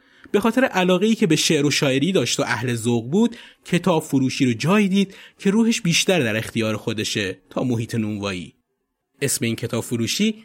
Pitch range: 120-195 Hz